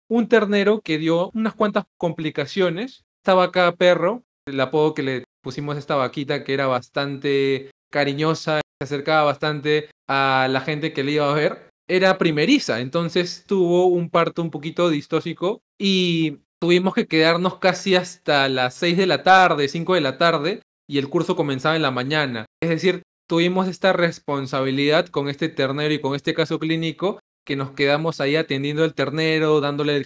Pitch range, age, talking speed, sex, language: 140-180 Hz, 20-39, 170 wpm, male, Spanish